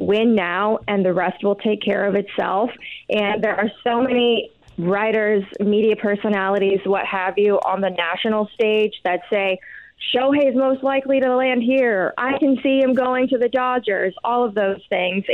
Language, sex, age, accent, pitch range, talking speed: English, female, 20-39, American, 200-250 Hz, 175 wpm